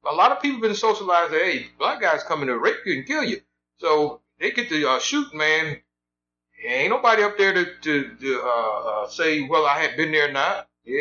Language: English